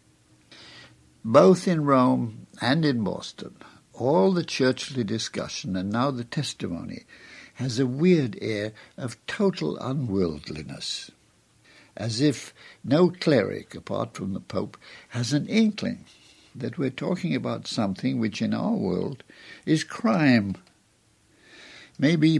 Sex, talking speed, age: male, 120 wpm, 60-79